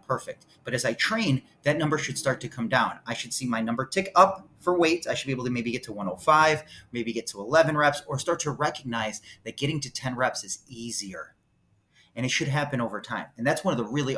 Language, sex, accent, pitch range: English, male, American, 115-145 Hz